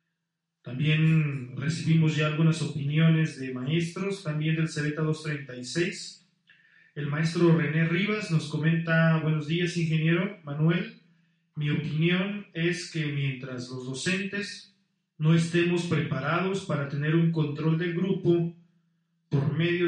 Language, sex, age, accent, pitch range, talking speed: Spanish, male, 40-59, Mexican, 150-175 Hz, 120 wpm